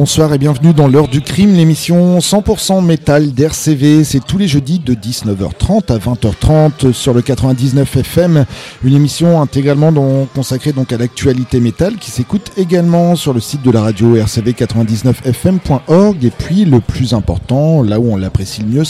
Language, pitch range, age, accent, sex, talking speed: French, 115-150 Hz, 40-59, French, male, 165 wpm